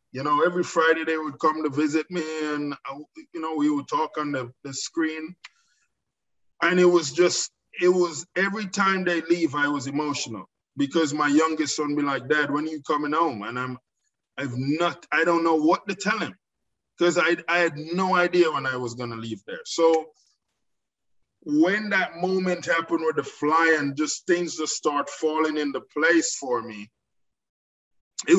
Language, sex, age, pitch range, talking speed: English, male, 20-39, 145-175 Hz, 190 wpm